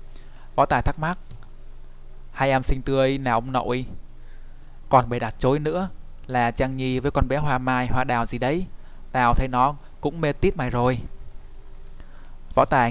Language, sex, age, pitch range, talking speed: Vietnamese, male, 20-39, 115-135 Hz, 175 wpm